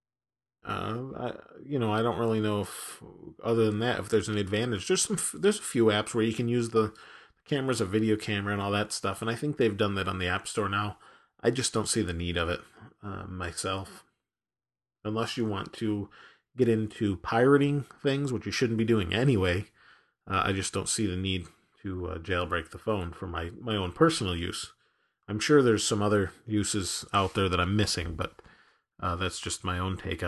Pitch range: 95-120 Hz